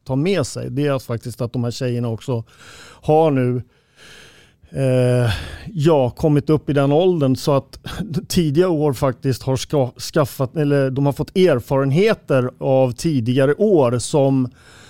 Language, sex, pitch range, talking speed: Swedish, male, 130-150 Hz, 150 wpm